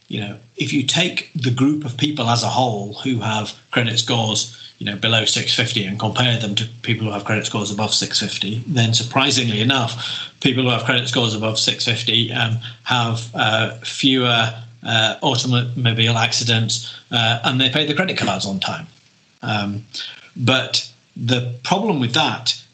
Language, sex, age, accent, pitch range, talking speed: English, male, 40-59, British, 105-130 Hz, 165 wpm